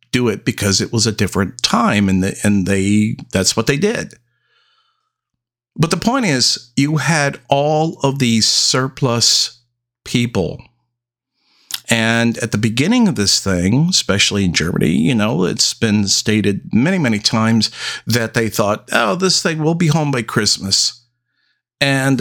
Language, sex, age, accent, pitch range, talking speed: English, male, 50-69, American, 115-150 Hz, 150 wpm